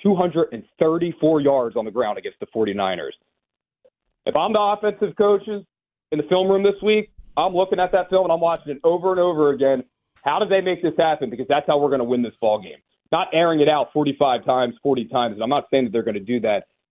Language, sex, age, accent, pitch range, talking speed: English, male, 30-49, American, 135-180 Hz, 235 wpm